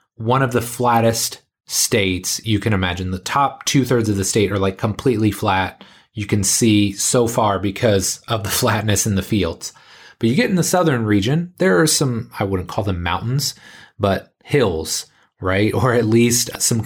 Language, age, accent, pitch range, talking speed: English, 30-49, American, 100-130 Hz, 185 wpm